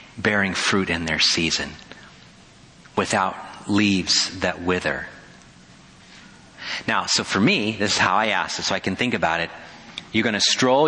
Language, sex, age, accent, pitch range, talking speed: English, male, 40-59, American, 105-135 Hz, 160 wpm